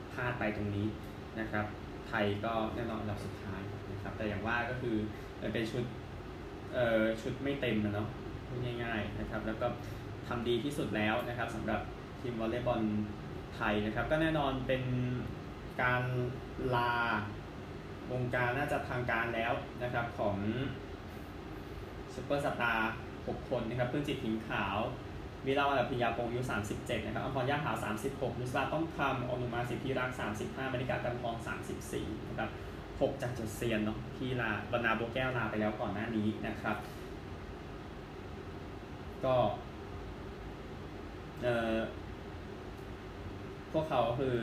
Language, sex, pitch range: Thai, male, 100-125 Hz